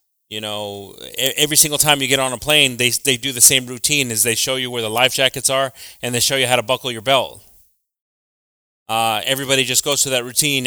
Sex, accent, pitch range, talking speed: male, American, 110-130 Hz, 230 wpm